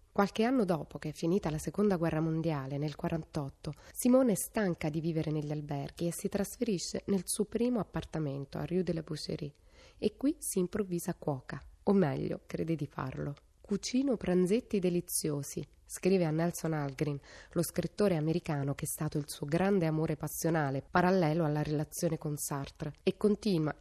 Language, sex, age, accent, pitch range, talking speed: Italian, female, 20-39, native, 150-195 Hz, 165 wpm